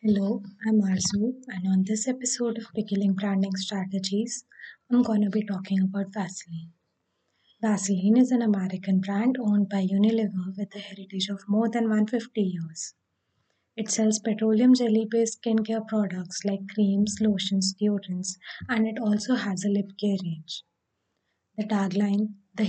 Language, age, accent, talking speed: English, 20-39, Indian, 145 wpm